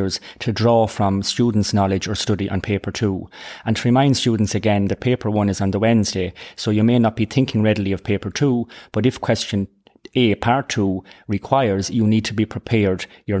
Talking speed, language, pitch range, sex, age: 200 wpm, English, 100-115 Hz, male, 30-49